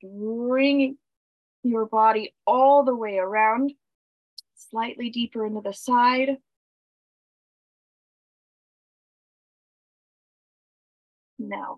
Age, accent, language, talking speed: 40-59, American, English, 65 wpm